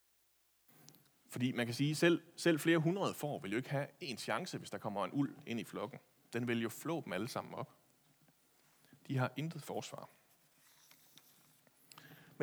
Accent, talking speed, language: native, 180 wpm, Danish